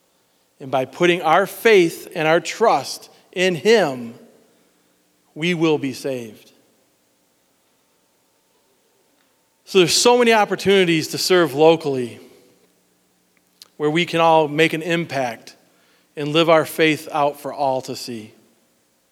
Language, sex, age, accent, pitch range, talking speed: English, male, 40-59, American, 135-175 Hz, 120 wpm